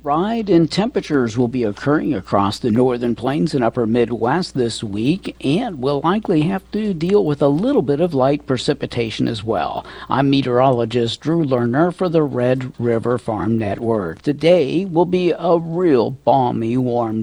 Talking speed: 165 wpm